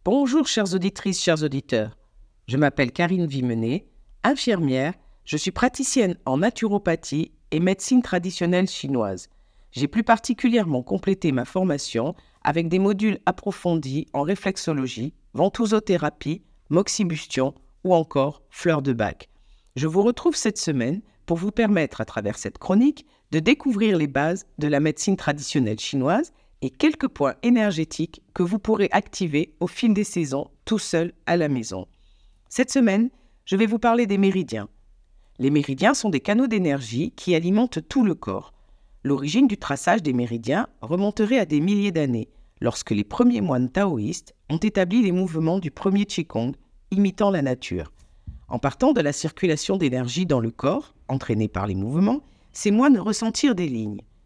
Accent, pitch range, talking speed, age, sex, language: French, 135-210 Hz, 155 wpm, 50-69, female, French